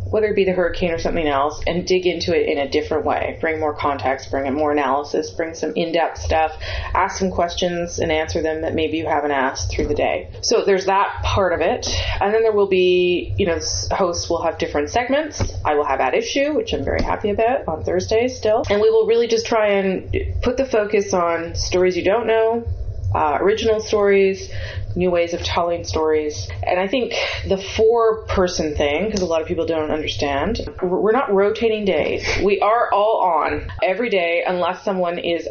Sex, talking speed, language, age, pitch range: female, 205 wpm, English, 30-49, 155-215 Hz